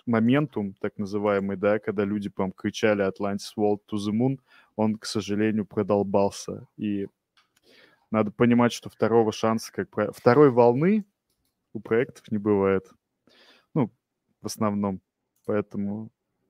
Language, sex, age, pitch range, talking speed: Russian, male, 20-39, 105-125 Hz, 125 wpm